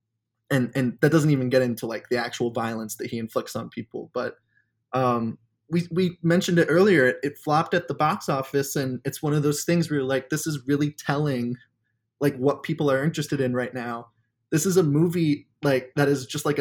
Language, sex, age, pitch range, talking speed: English, male, 20-39, 120-145 Hz, 215 wpm